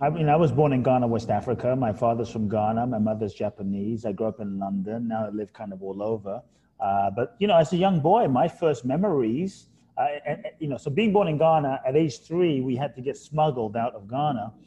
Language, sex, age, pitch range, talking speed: English, male, 30-49, 110-145 Hz, 245 wpm